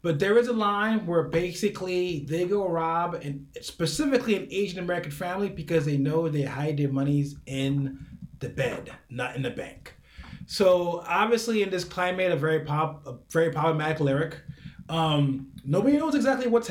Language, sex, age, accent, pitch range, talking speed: English, male, 30-49, American, 150-205 Hz, 170 wpm